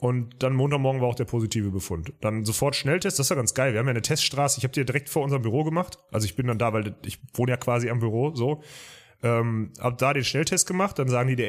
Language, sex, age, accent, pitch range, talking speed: German, male, 30-49, German, 115-150 Hz, 275 wpm